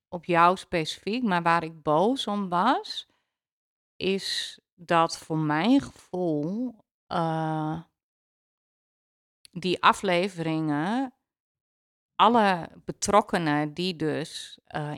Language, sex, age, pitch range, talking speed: Dutch, female, 30-49, 155-190 Hz, 90 wpm